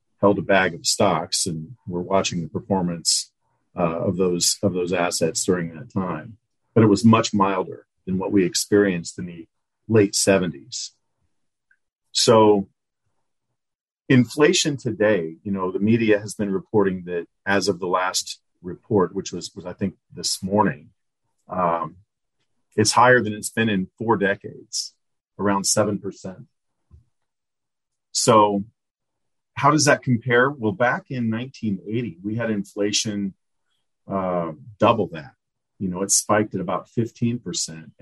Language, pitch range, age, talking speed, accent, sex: English, 95-115 Hz, 40-59, 135 wpm, American, male